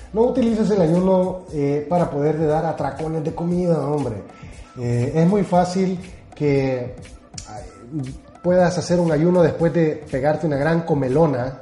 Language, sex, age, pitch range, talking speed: Spanish, male, 30-49, 130-165 Hz, 140 wpm